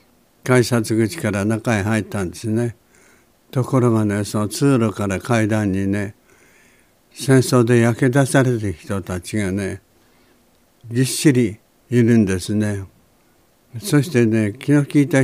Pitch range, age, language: 100-125 Hz, 60-79, Japanese